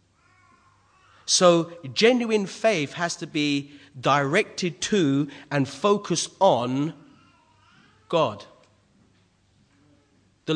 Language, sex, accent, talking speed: English, male, British, 75 wpm